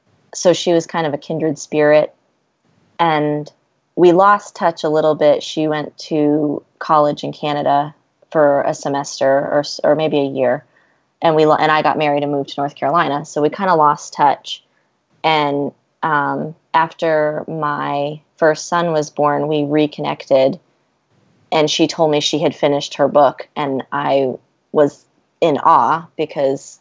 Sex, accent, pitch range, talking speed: female, American, 145-160 Hz, 160 wpm